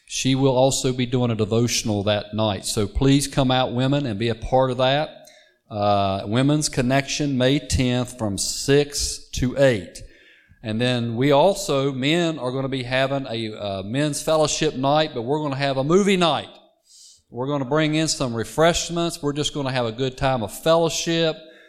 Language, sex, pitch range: English, male, 115-145 Hz